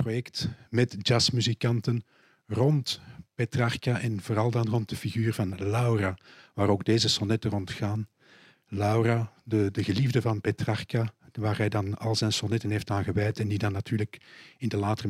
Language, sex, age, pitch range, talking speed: Dutch, male, 50-69, 100-120 Hz, 155 wpm